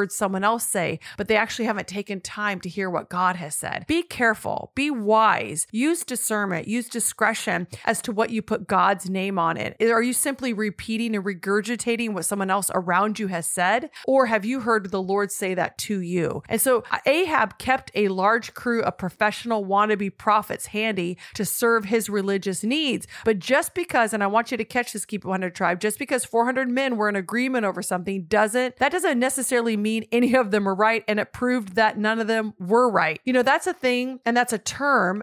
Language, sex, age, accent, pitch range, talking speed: English, female, 30-49, American, 195-240 Hz, 210 wpm